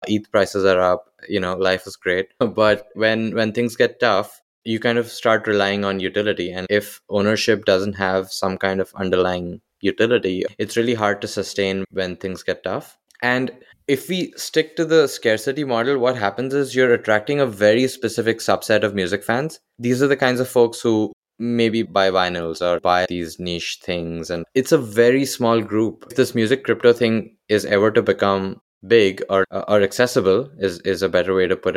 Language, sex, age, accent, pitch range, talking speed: English, male, 20-39, Indian, 95-120 Hz, 195 wpm